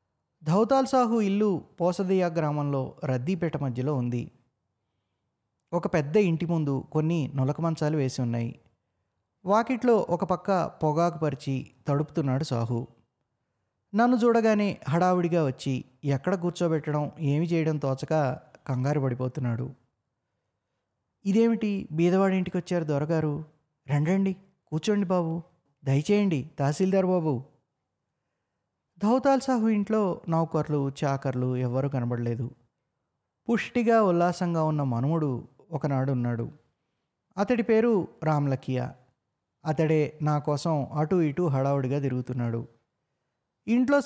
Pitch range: 130-180 Hz